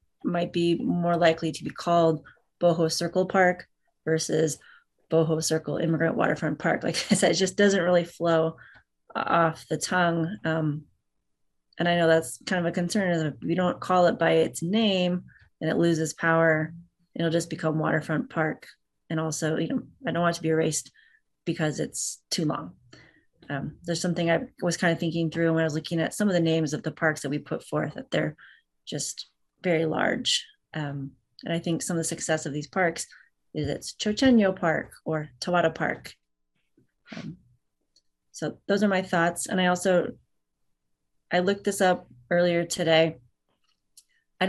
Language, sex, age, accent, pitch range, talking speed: English, female, 30-49, American, 155-180 Hz, 180 wpm